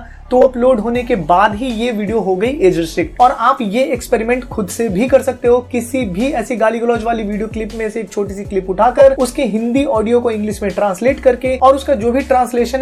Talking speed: 230 wpm